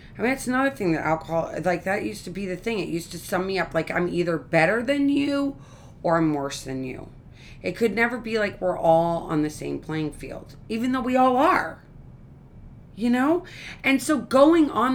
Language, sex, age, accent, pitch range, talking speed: English, female, 30-49, American, 175-260 Hz, 215 wpm